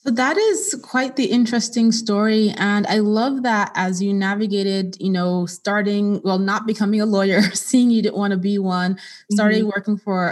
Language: English